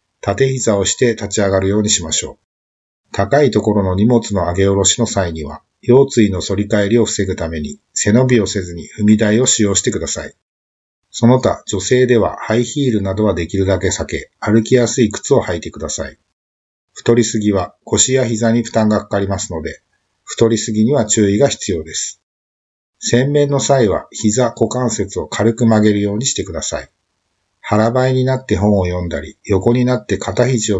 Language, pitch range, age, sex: Japanese, 95-120 Hz, 50-69, male